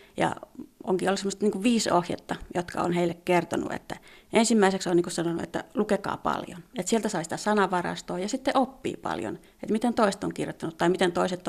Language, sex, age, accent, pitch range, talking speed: Finnish, female, 30-49, native, 180-230 Hz, 190 wpm